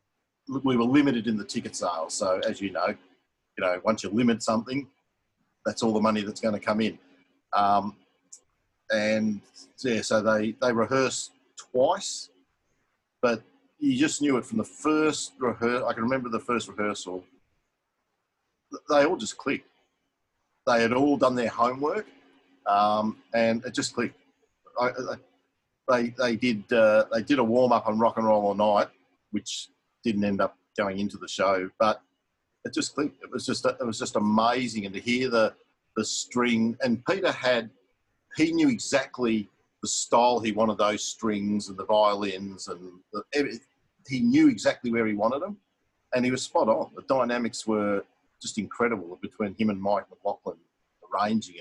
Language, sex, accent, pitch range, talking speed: English, male, Australian, 100-125 Hz, 170 wpm